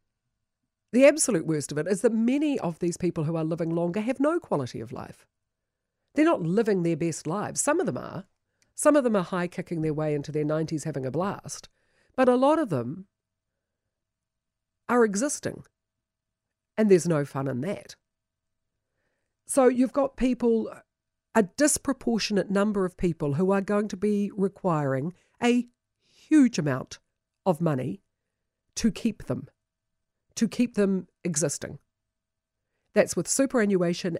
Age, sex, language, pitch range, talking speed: 50-69, female, English, 135-205 Hz, 155 wpm